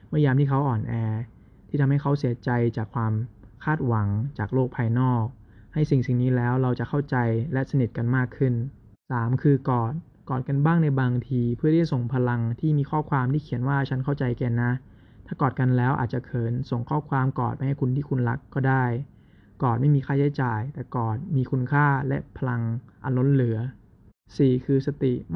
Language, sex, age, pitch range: Thai, male, 20-39, 115-140 Hz